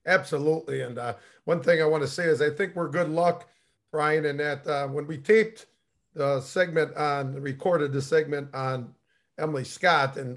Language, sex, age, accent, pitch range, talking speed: English, male, 40-59, American, 150-175 Hz, 185 wpm